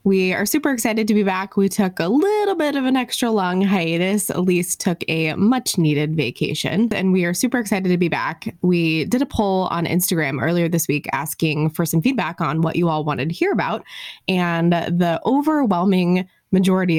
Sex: female